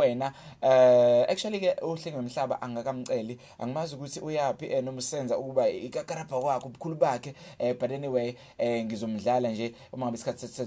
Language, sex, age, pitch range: English, male, 20-39, 130-165 Hz